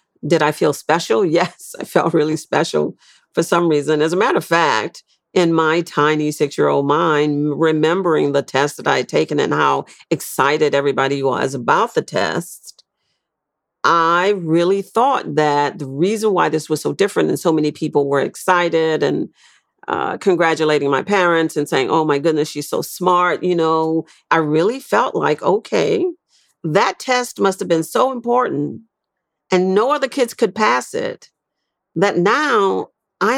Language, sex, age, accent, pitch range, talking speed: English, female, 50-69, American, 155-235 Hz, 165 wpm